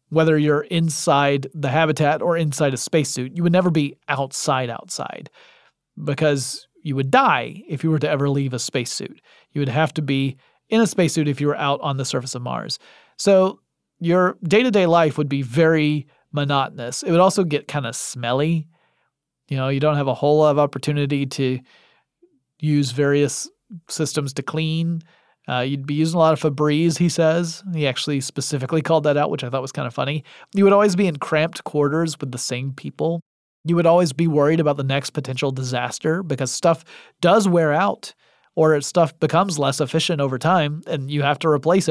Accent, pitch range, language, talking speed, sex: American, 140-170 Hz, English, 195 wpm, male